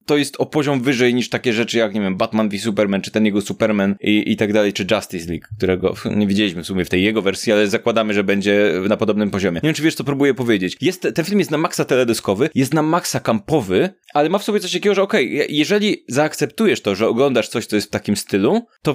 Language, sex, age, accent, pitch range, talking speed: Polish, male, 20-39, native, 110-155 Hz, 255 wpm